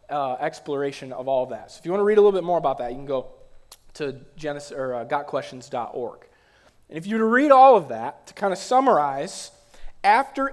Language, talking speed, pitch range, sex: English, 230 wpm, 155-210 Hz, male